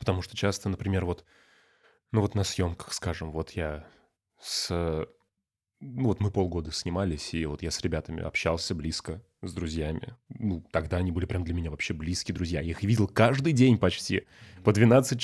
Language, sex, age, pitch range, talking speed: Russian, male, 20-39, 85-105 Hz, 175 wpm